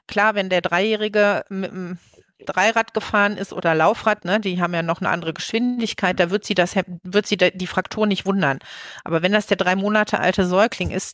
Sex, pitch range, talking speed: female, 175-205 Hz, 205 wpm